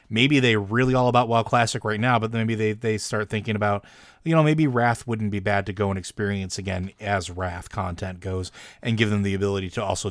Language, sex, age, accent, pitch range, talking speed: English, male, 30-49, American, 100-115 Hz, 230 wpm